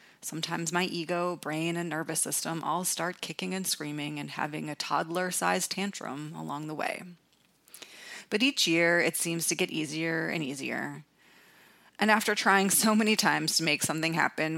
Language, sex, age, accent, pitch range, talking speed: English, female, 30-49, American, 160-195 Hz, 165 wpm